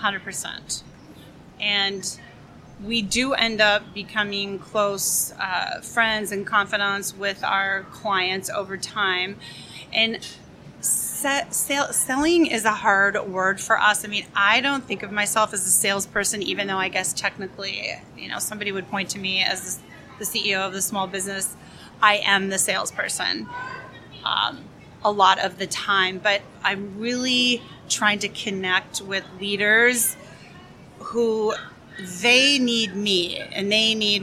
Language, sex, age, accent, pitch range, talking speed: English, female, 30-49, American, 190-220 Hz, 140 wpm